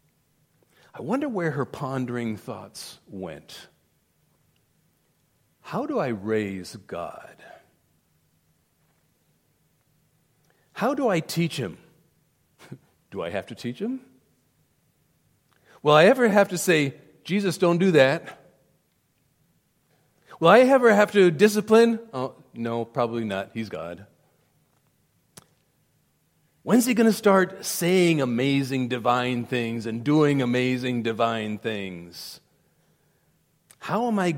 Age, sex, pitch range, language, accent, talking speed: 40-59, male, 115-160 Hz, English, American, 110 wpm